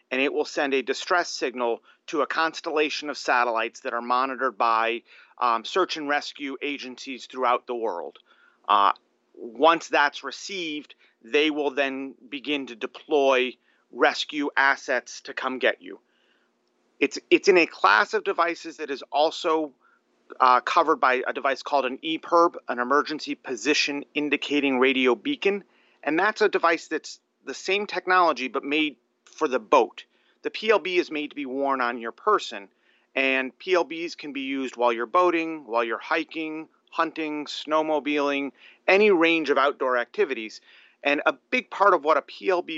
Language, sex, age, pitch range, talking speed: English, male, 30-49, 130-170 Hz, 160 wpm